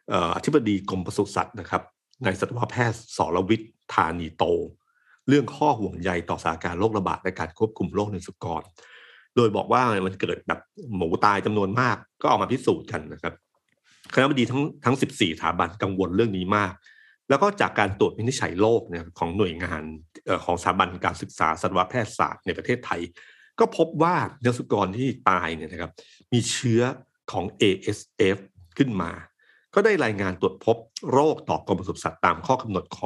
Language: Thai